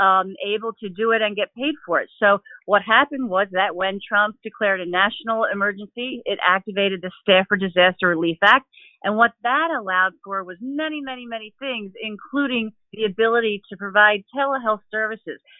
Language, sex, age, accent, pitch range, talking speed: English, female, 40-59, American, 200-250 Hz, 175 wpm